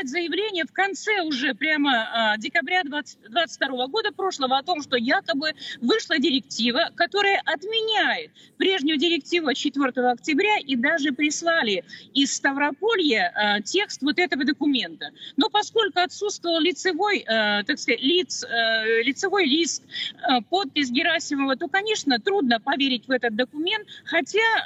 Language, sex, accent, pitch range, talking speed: Russian, female, native, 260-350 Hz, 130 wpm